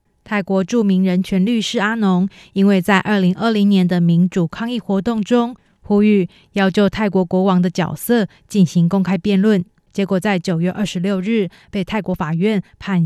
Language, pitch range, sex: Chinese, 180-210 Hz, female